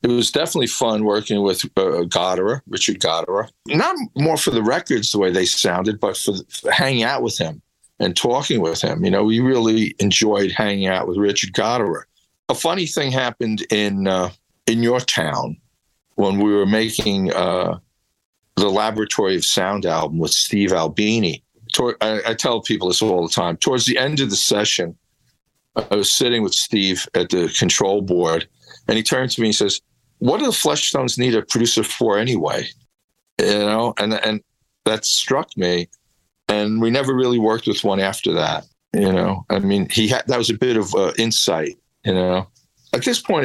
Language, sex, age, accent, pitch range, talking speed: English, male, 50-69, American, 100-120 Hz, 190 wpm